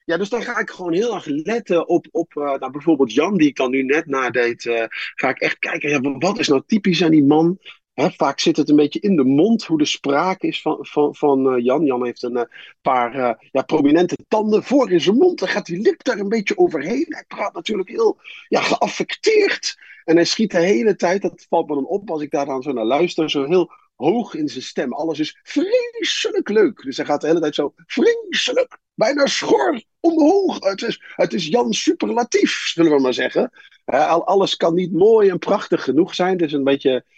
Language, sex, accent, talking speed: Dutch, male, Dutch, 225 wpm